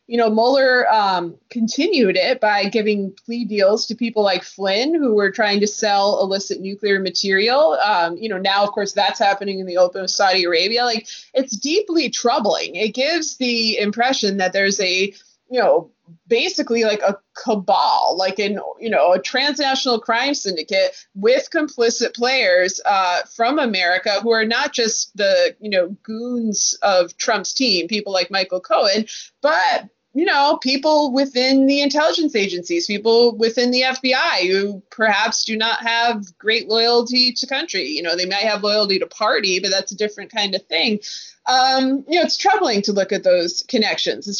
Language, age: English, 20-39